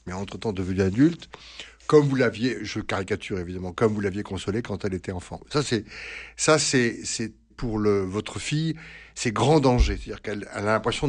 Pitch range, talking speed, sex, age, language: 105-145 Hz, 190 wpm, male, 60-79, French